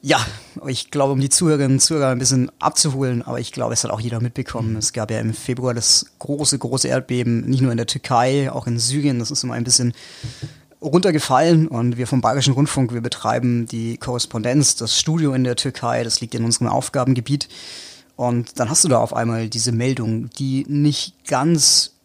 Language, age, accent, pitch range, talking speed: German, 30-49, German, 120-140 Hz, 200 wpm